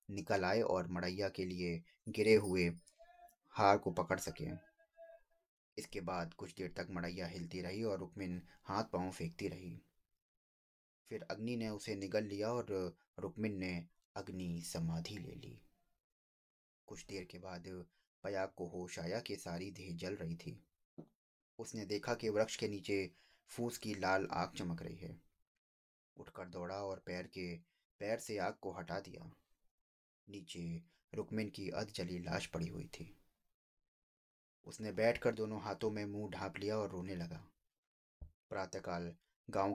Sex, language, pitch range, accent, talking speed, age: male, Hindi, 85-105 Hz, native, 150 wpm, 20-39